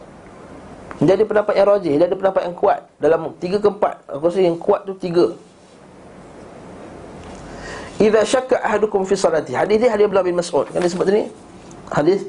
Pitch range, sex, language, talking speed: 150-210 Hz, male, Malay, 175 wpm